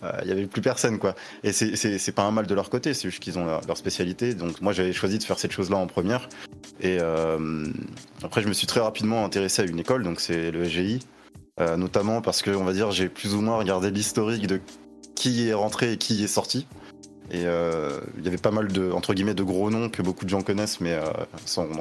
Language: French